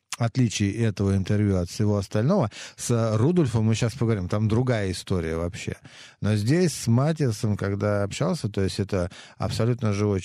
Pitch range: 90-110 Hz